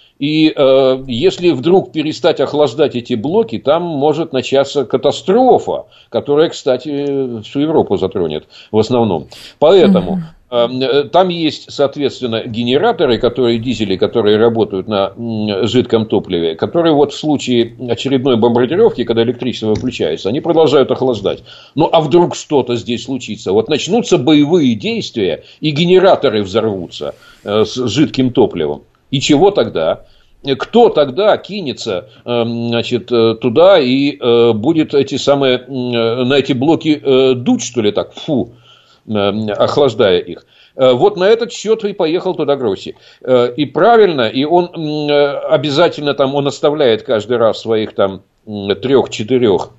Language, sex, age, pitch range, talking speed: Russian, male, 50-69, 115-150 Hz, 125 wpm